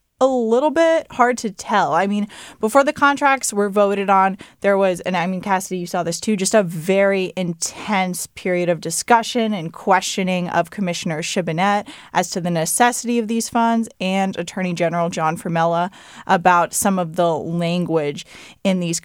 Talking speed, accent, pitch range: 175 wpm, American, 170-230 Hz